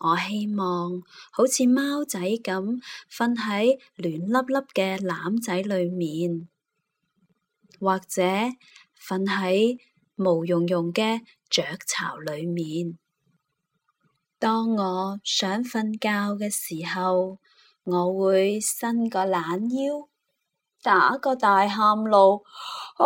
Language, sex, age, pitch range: Chinese, female, 20-39, 180-240 Hz